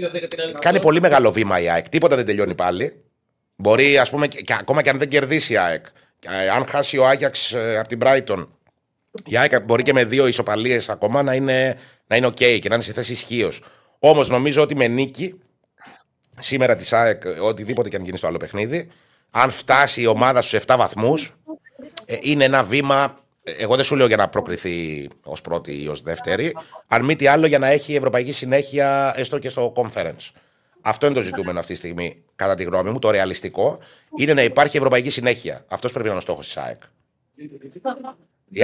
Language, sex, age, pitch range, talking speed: Greek, male, 30-49, 120-145 Hz, 195 wpm